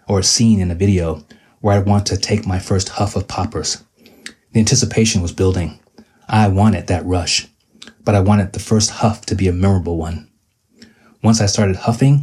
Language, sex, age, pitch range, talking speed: English, male, 30-49, 95-110 Hz, 190 wpm